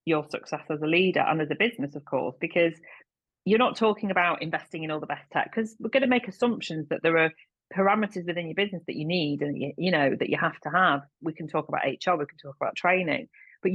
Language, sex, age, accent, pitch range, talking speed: English, female, 30-49, British, 160-220 Hz, 250 wpm